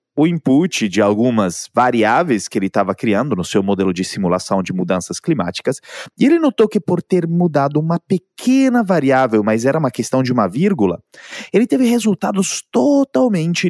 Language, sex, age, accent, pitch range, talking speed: Portuguese, male, 20-39, Brazilian, 100-155 Hz, 165 wpm